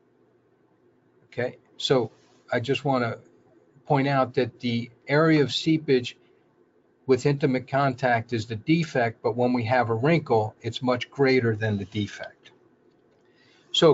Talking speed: 140 wpm